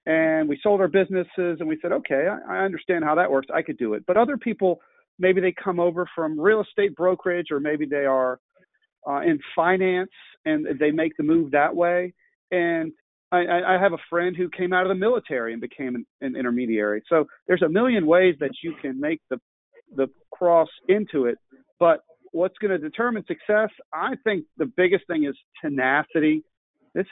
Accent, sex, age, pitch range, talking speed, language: American, male, 40-59, 140-185 Hz, 190 wpm, English